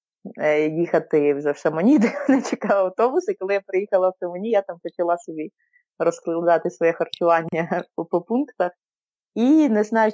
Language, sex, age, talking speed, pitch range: Ukrainian, female, 20-39, 155 wpm, 155-220 Hz